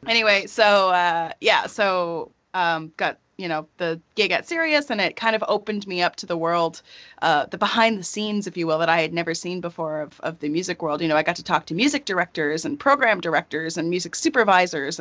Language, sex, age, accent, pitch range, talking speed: English, female, 30-49, American, 165-205 Hz, 230 wpm